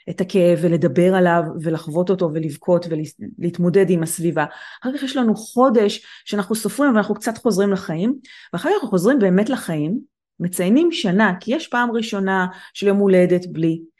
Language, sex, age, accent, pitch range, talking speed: Hebrew, female, 30-49, native, 175-235 Hz, 165 wpm